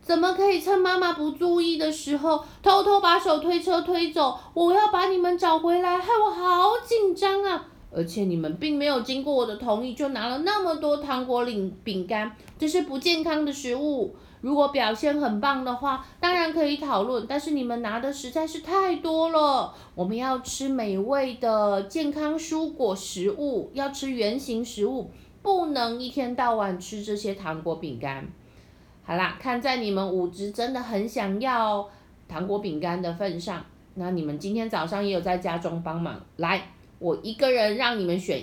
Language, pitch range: Chinese, 210-340 Hz